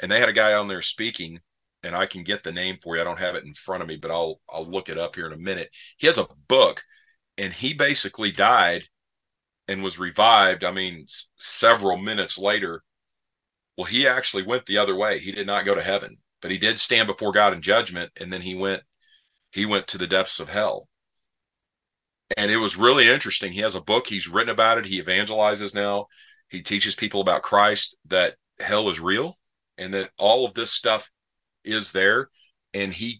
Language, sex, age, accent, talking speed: English, male, 40-59, American, 215 wpm